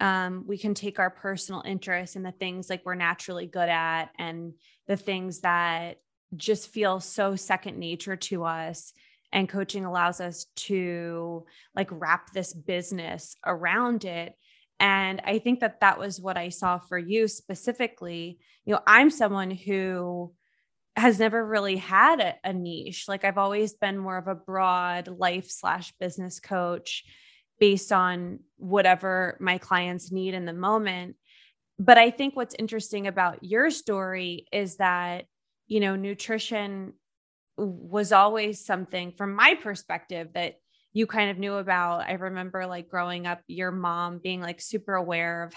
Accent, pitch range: American, 175-200 Hz